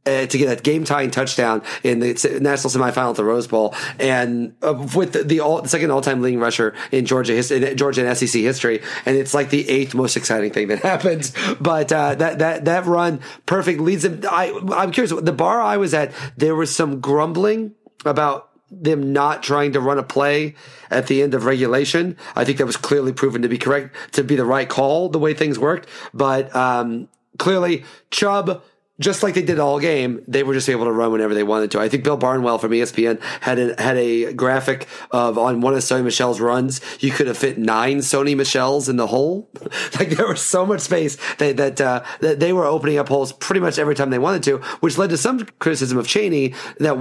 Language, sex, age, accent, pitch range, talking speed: English, male, 30-49, American, 125-155 Hz, 220 wpm